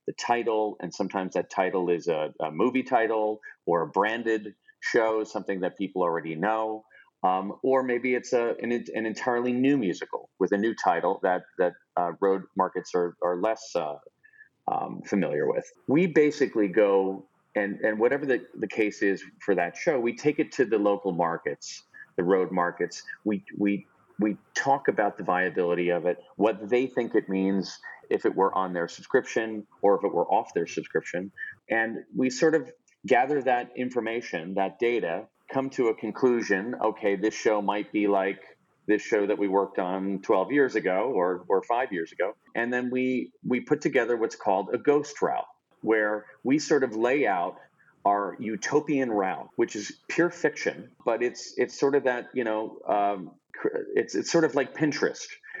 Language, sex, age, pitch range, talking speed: English, male, 40-59, 100-130 Hz, 180 wpm